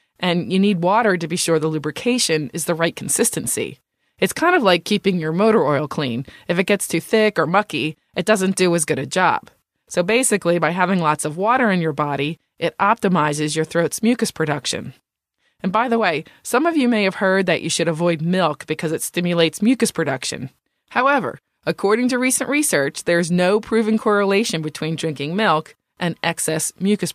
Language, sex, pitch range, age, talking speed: English, female, 155-210 Hz, 20-39, 190 wpm